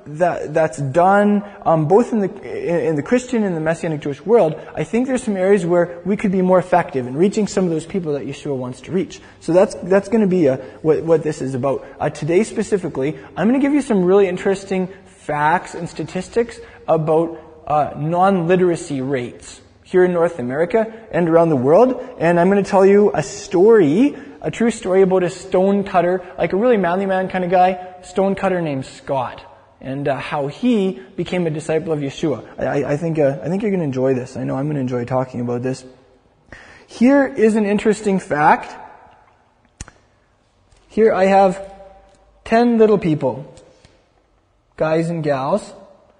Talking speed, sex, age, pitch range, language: 190 wpm, male, 20-39, 155-195 Hz, English